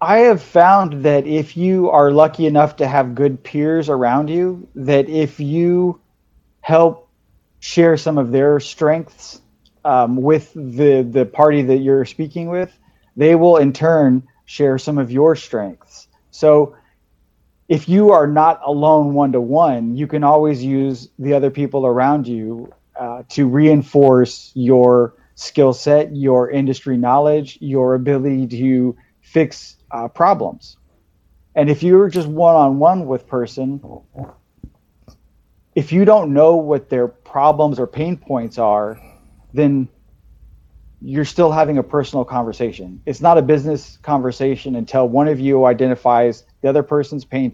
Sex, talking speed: male, 140 wpm